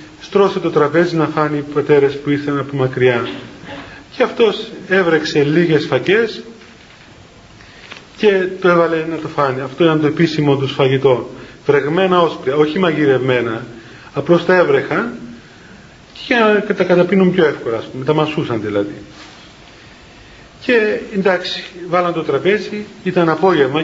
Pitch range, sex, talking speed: 145-190 Hz, male, 130 wpm